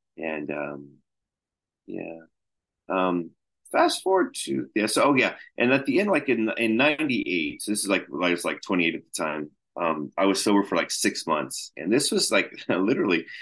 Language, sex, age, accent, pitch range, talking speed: English, male, 30-49, American, 80-100 Hz, 190 wpm